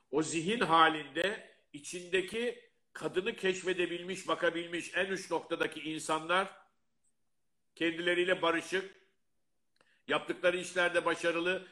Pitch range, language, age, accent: 145-185 Hz, Turkish, 60-79, native